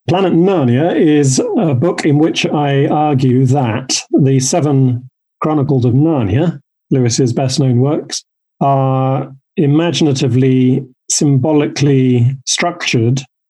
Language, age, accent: English, 40-59, British